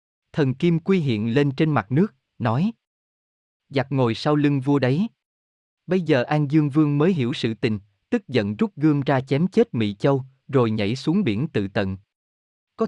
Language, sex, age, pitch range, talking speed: Vietnamese, male, 20-39, 120-160 Hz, 185 wpm